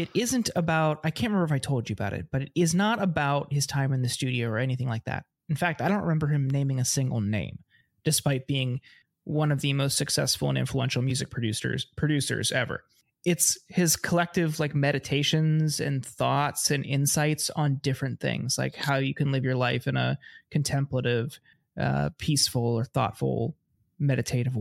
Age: 20-39